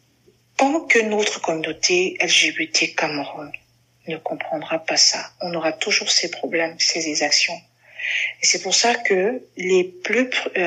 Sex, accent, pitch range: female, French, 165-235 Hz